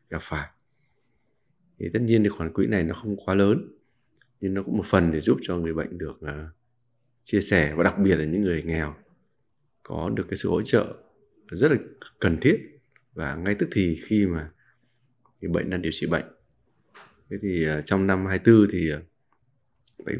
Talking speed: 195 wpm